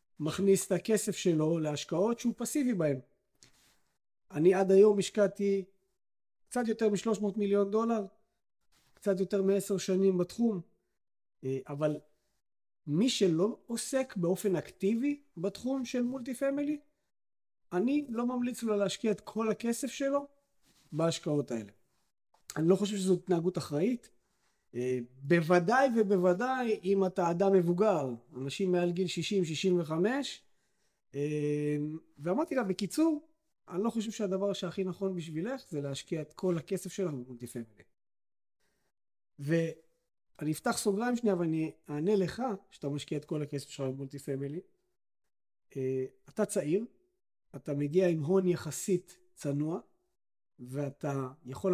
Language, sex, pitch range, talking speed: Hebrew, male, 155-215 Hz, 120 wpm